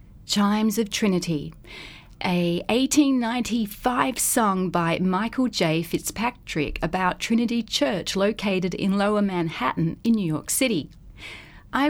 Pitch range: 180-235 Hz